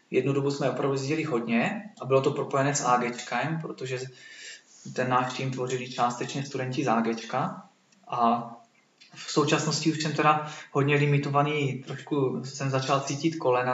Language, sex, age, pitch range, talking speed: Czech, male, 20-39, 125-145 Hz, 145 wpm